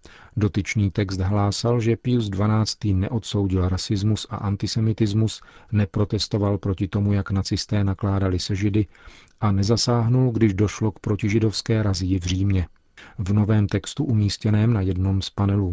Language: Czech